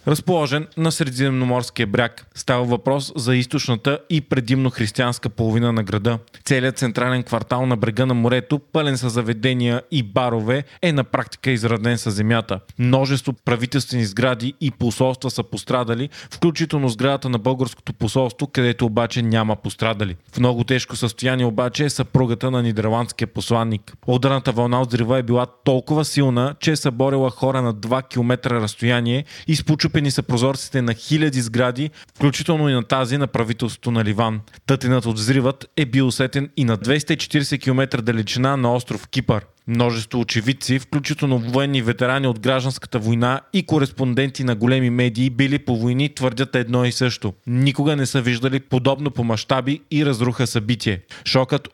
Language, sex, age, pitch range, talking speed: Bulgarian, male, 20-39, 120-140 Hz, 145 wpm